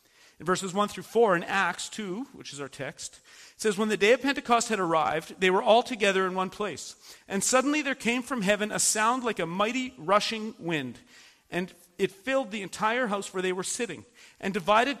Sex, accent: male, American